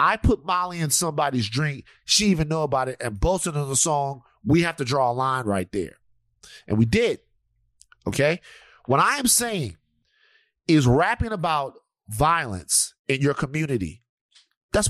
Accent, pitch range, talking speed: American, 135-195 Hz, 160 wpm